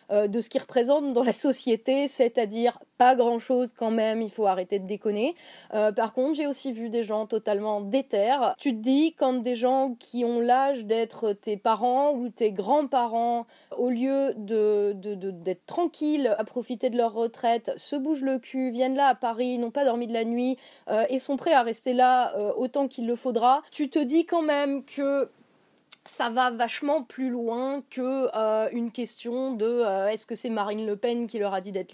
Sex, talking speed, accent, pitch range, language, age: female, 205 wpm, French, 220-265 Hz, French, 20-39